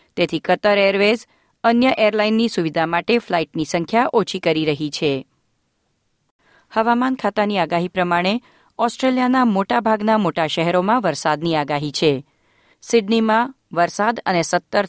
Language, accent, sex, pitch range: Gujarati, native, female, 165-225 Hz